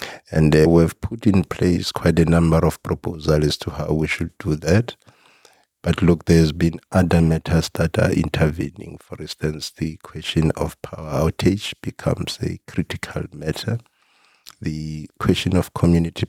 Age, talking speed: 60-79, 155 wpm